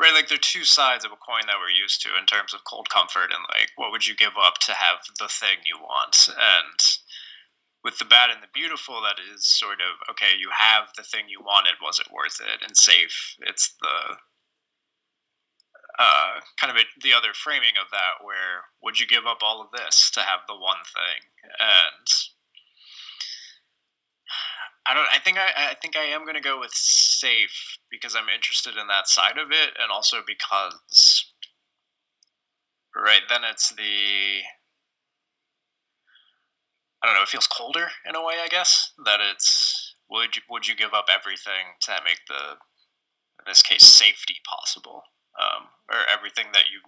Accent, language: American, English